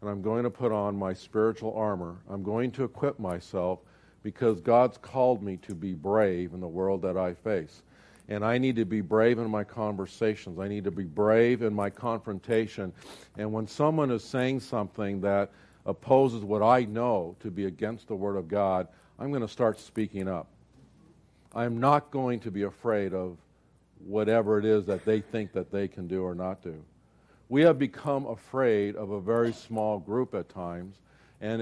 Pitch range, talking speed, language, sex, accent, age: 100-135 Hz, 190 wpm, English, male, American, 50-69